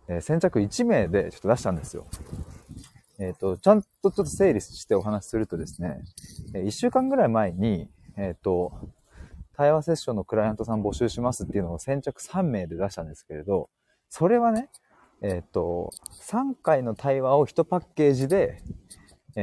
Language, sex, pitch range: Japanese, male, 95-155 Hz